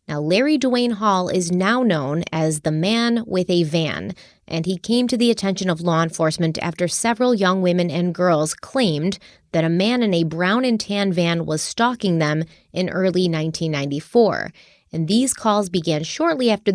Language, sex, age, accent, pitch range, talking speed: English, female, 30-49, American, 165-210 Hz, 180 wpm